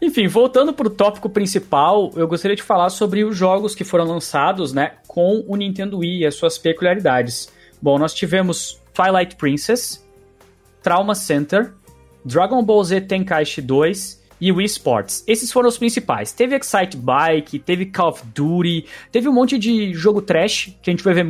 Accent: Brazilian